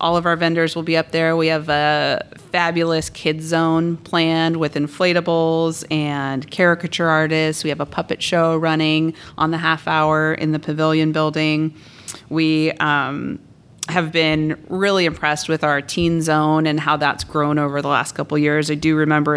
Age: 30-49